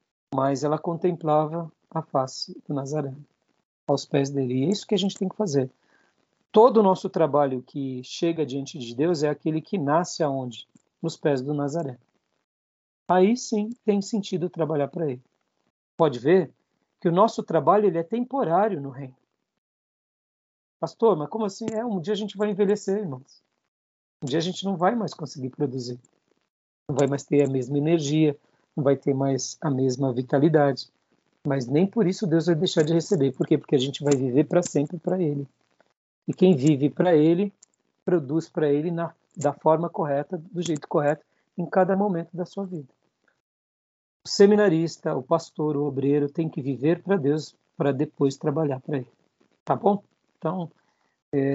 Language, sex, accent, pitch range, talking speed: Portuguese, male, Brazilian, 140-180 Hz, 175 wpm